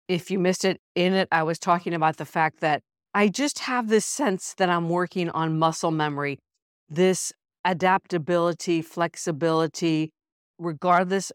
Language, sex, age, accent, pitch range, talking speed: English, female, 50-69, American, 155-195 Hz, 150 wpm